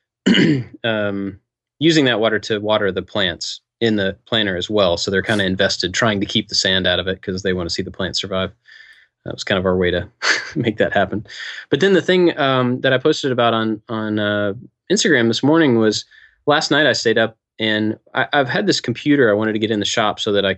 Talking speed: 235 wpm